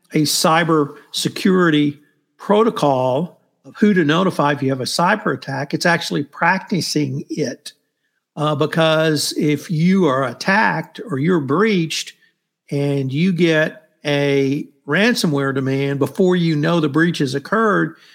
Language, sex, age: English, male, 50-69